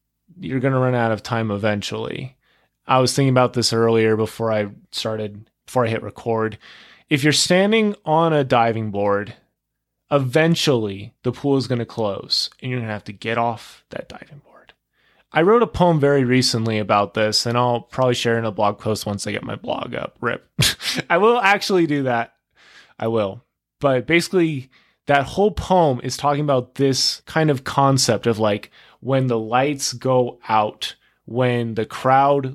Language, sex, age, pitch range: English, male, 20-39, 115-145 Hz